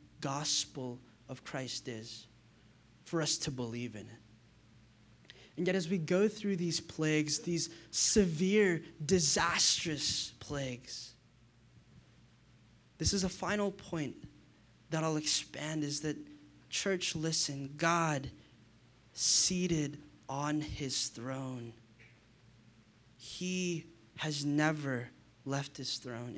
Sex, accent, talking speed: male, American, 100 wpm